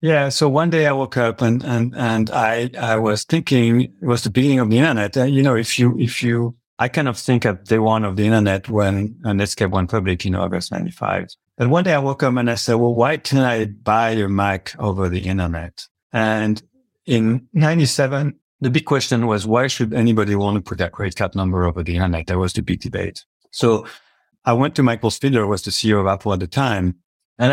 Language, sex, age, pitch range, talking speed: English, male, 60-79, 100-125 Hz, 230 wpm